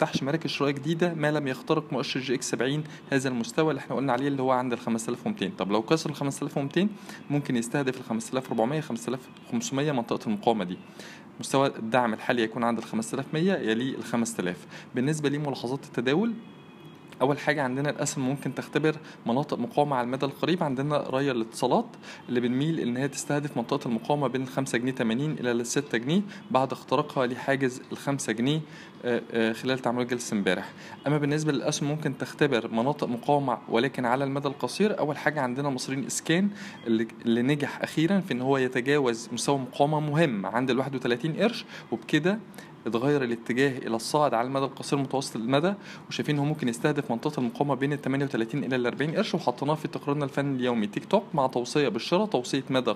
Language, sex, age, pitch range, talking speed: Arabic, male, 20-39, 125-150 Hz, 165 wpm